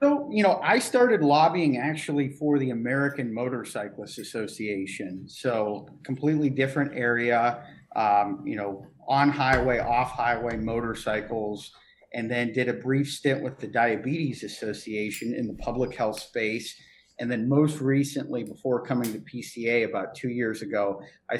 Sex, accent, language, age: male, American, English, 40-59